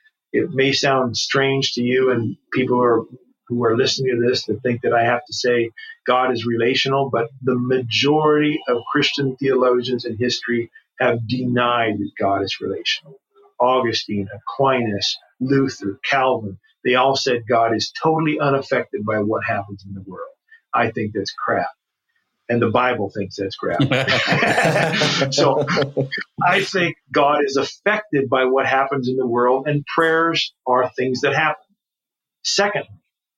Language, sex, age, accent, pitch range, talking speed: English, male, 40-59, American, 120-155 Hz, 155 wpm